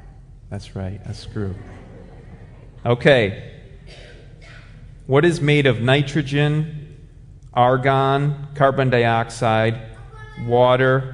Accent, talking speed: American, 75 wpm